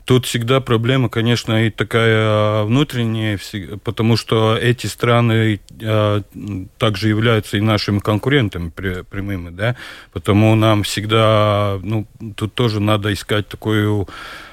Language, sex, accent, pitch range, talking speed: Russian, male, native, 105-115 Hz, 115 wpm